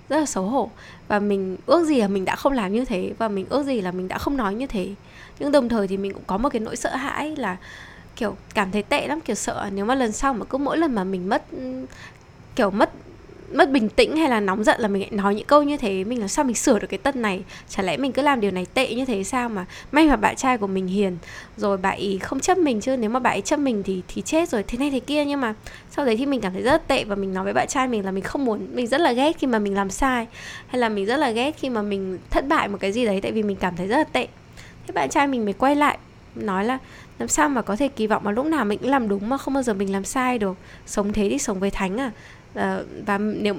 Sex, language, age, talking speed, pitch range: female, Vietnamese, 10-29, 295 wpm, 205-280 Hz